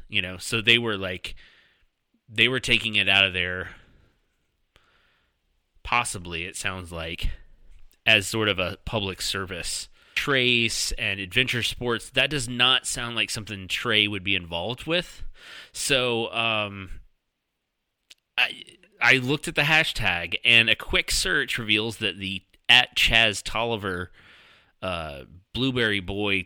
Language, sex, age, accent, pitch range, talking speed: English, male, 30-49, American, 100-125 Hz, 135 wpm